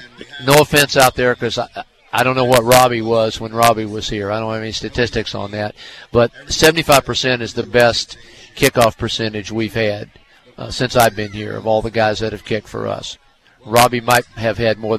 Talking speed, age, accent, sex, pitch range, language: 205 wpm, 50-69, American, male, 110-125 Hz, English